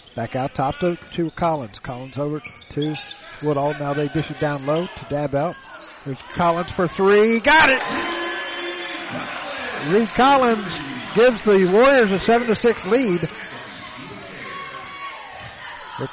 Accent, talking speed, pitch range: American, 125 wpm, 155-225 Hz